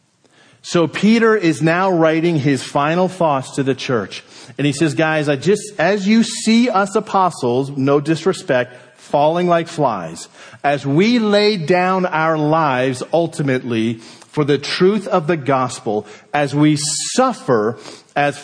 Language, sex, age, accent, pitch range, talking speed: English, male, 40-59, American, 135-185 Hz, 145 wpm